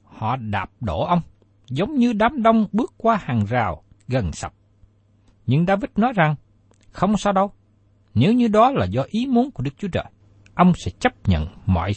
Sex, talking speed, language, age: male, 185 wpm, Vietnamese, 60-79